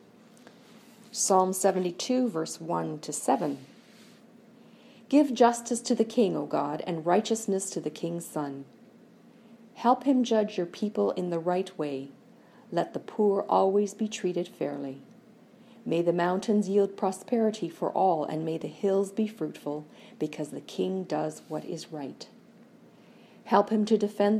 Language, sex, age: English, female, 50-69